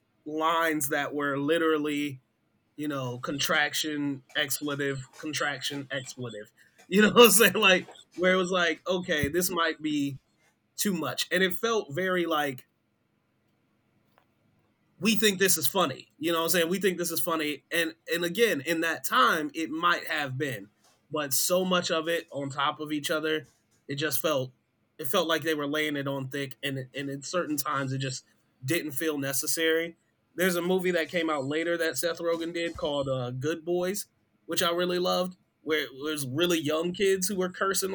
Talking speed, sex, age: 185 wpm, male, 30-49